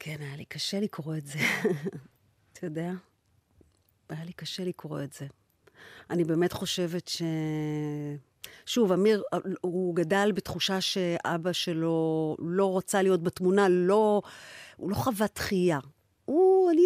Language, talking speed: Hebrew, 130 wpm